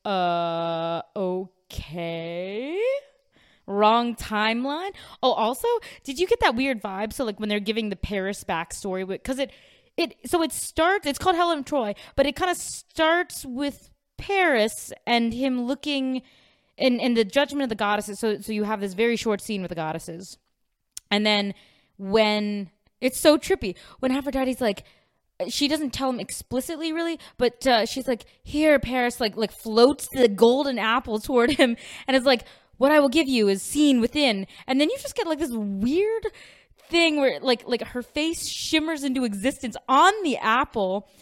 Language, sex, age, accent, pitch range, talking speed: English, female, 20-39, American, 210-290 Hz, 170 wpm